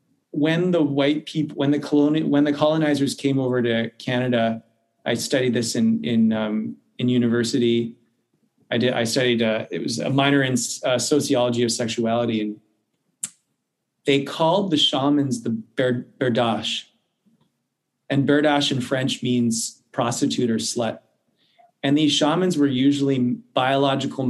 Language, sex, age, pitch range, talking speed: English, male, 30-49, 120-145 Hz, 145 wpm